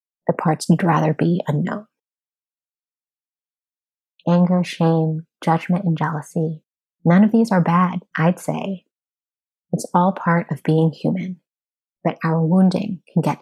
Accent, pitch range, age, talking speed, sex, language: American, 165-185 Hz, 30-49, 130 wpm, female, English